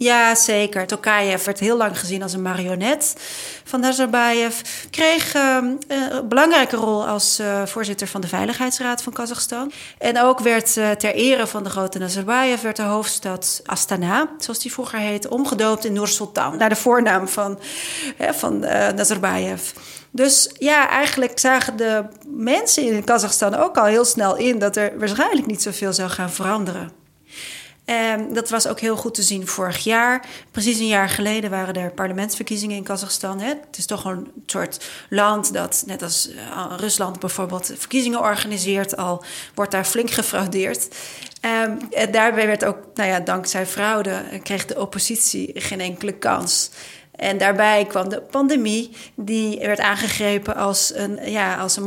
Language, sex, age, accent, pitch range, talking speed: Dutch, female, 40-59, Dutch, 195-235 Hz, 150 wpm